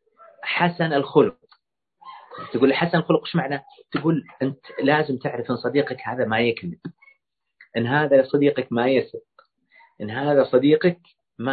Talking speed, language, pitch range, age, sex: 130 wpm, Arabic, 125-170 Hz, 40-59, male